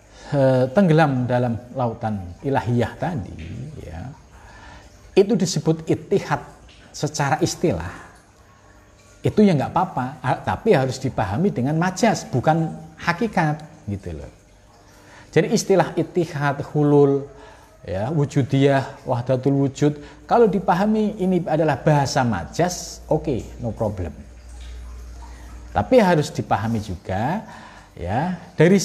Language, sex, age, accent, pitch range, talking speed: Indonesian, male, 50-69, native, 100-160 Hz, 100 wpm